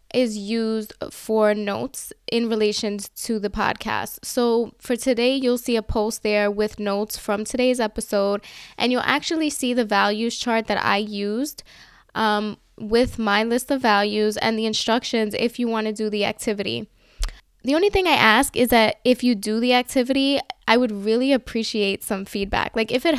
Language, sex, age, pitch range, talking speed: English, female, 10-29, 215-250 Hz, 180 wpm